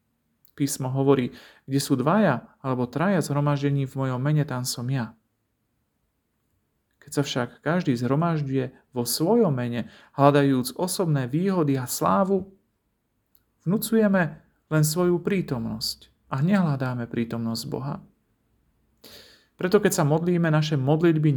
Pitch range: 130-170 Hz